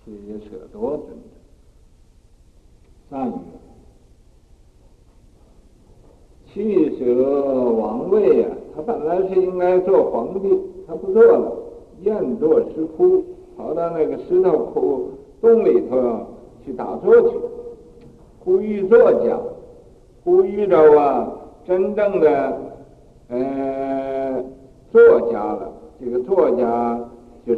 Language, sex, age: Chinese, male, 60-79